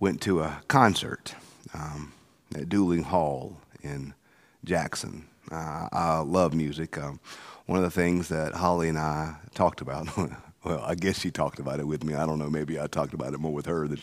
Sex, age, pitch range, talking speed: male, 40-59, 80-125 Hz, 195 wpm